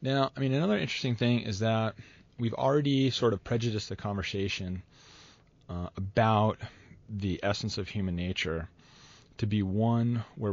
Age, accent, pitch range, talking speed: 30-49, American, 90-125 Hz, 150 wpm